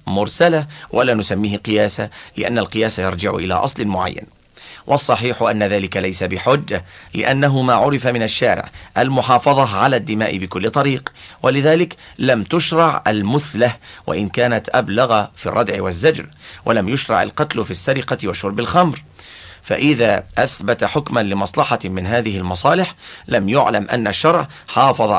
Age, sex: 40-59, male